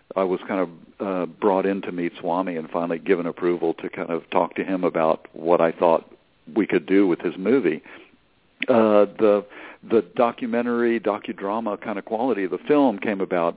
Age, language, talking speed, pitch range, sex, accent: 60-79, English, 190 wpm, 90-105 Hz, male, American